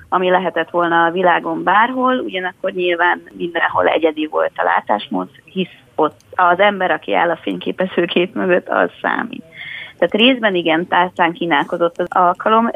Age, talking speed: 20-39, 150 wpm